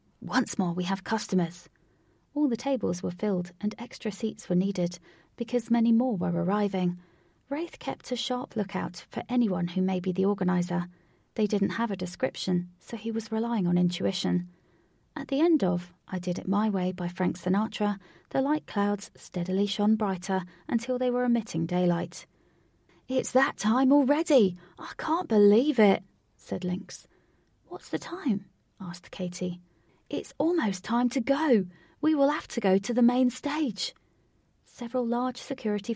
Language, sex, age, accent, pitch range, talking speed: English, female, 30-49, British, 180-235 Hz, 165 wpm